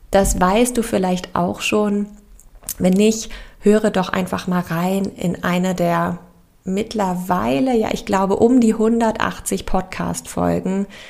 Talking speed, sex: 130 wpm, female